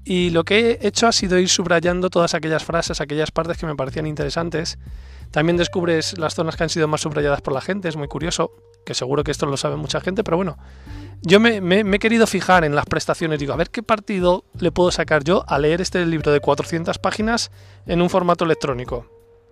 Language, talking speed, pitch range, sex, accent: Spanish, 225 wpm, 155-190 Hz, male, Spanish